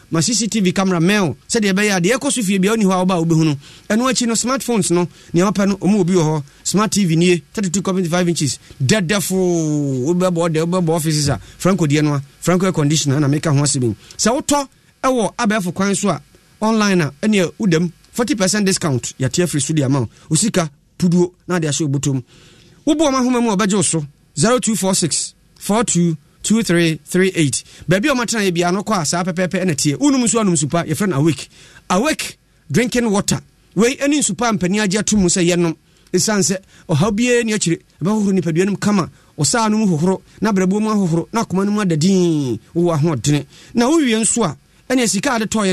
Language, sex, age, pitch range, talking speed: English, male, 30-49, 160-210 Hz, 175 wpm